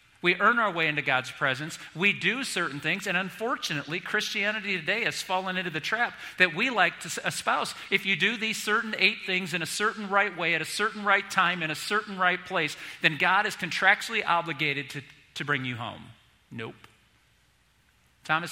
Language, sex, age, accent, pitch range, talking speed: English, male, 40-59, American, 145-190 Hz, 190 wpm